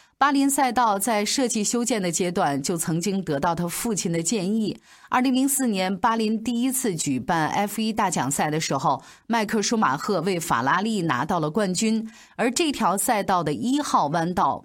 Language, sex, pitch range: Chinese, female, 160-240 Hz